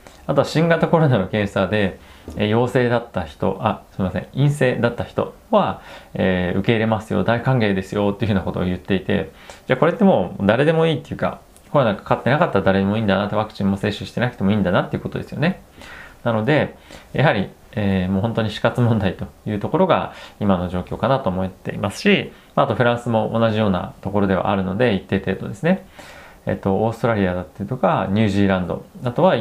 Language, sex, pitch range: Japanese, male, 95-115 Hz